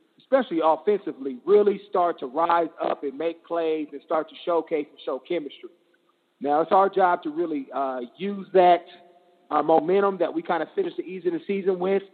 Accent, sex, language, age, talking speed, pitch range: American, male, English, 40-59, 180 wpm, 155-185 Hz